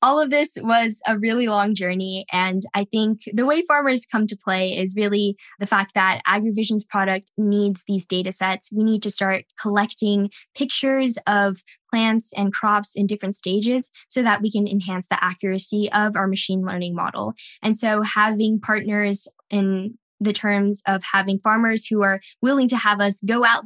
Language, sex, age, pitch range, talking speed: English, female, 10-29, 190-220 Hz, 180 wpm